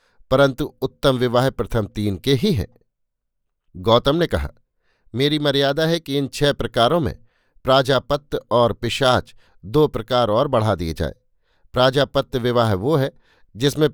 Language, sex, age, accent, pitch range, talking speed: Hindi, male, 50-69, native, 115-135 Hz, 140 wpm